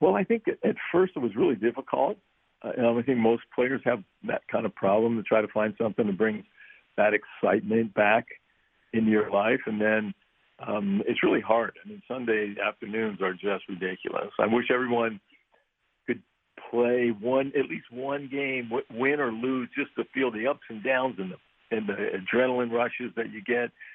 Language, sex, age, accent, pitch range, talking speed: English, male, 60-79, American, 105-125 Hz, 190 wpm